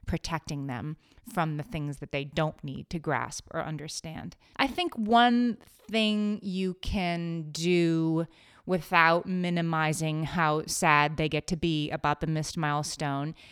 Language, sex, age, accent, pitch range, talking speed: English, female, 30-49, American, 150-180 Hz, 140 wpm